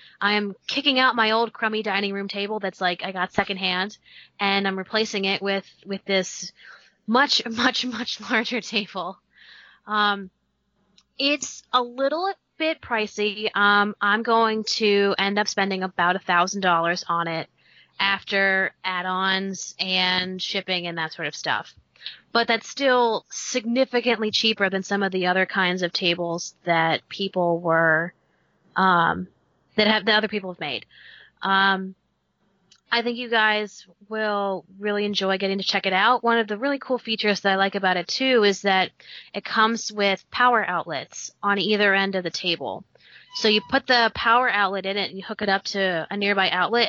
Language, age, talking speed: English, 20-39, 165 wpm